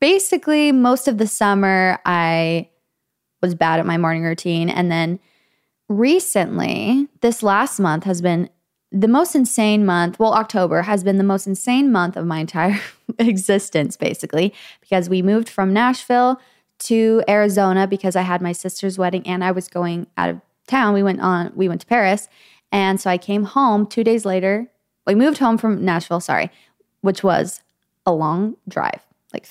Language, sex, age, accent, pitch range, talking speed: English, female, 20-39, American, 180-215 Hz, 170 wpm